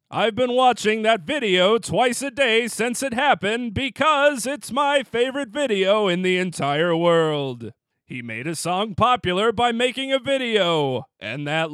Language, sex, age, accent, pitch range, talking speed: English, male, 40-59, American, 155-250 Hz, 160 wpm